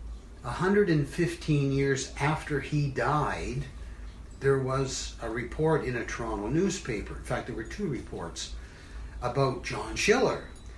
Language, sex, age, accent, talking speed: English, male, 60-79, American, 120 wpm